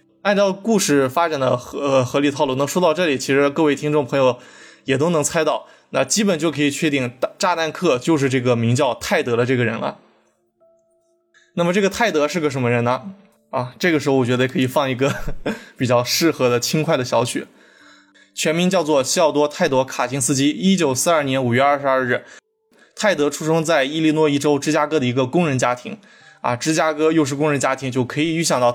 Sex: male